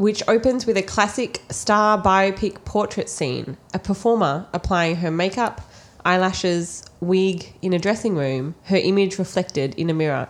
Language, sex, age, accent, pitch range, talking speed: English, female, 20-39, Australian, 150-190 Hz, 150 wpm